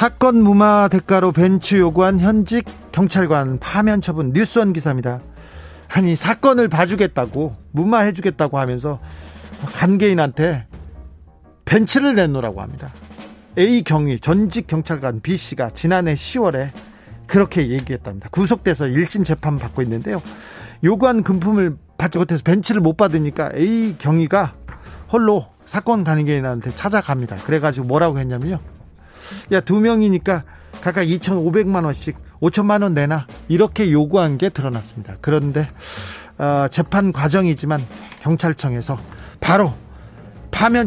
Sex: male